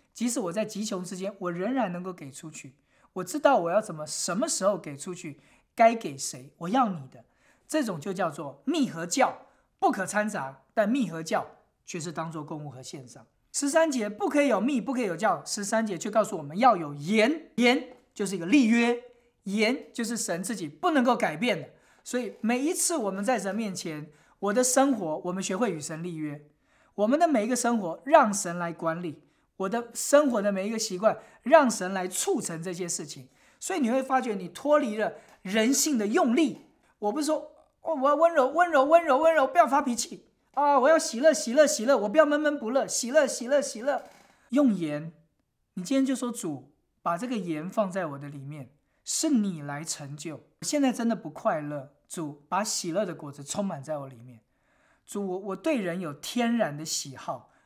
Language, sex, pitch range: English, male, 165-265 Hz